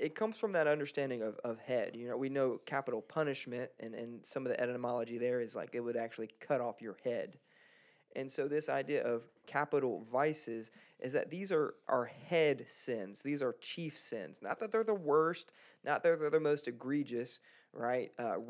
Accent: American